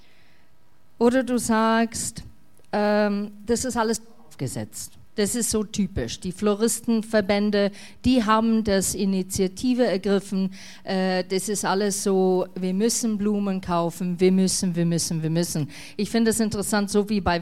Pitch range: 180-230 Hz